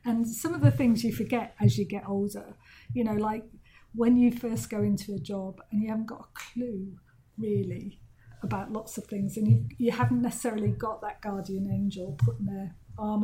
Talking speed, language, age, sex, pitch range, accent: 200 wpm, English, 40-59, female, 195-235 Hz, British